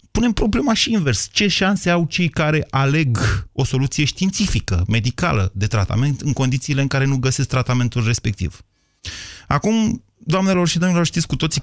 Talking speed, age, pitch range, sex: 160 wpm, 30-49, 105-145 Hz, male